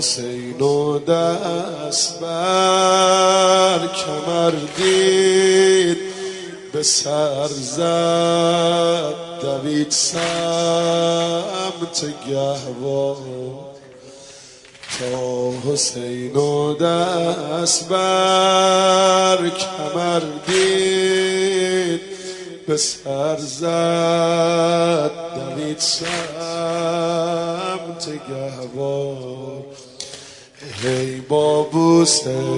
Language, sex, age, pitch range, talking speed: Persian, male, 30-49, 145-170 Hz, 45 wpm